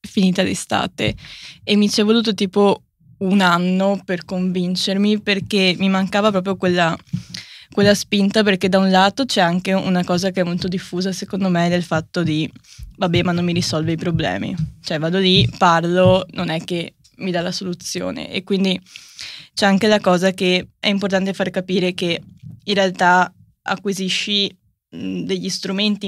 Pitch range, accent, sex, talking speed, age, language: 180-195 Hz, native, female, 165 wpm, 10-29, Italian